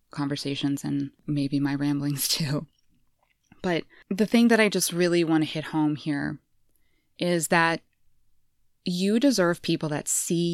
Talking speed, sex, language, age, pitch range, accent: 140 wpm, female, English, 20-39, 145-210 Hz, American